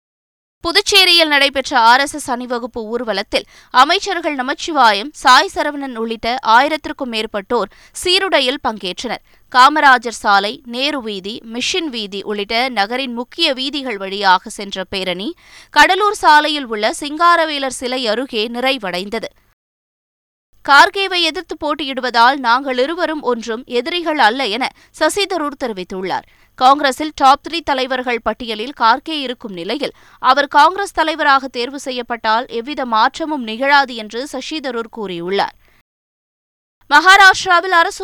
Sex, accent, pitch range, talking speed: female, native, 225-300 Hz, 105 wpm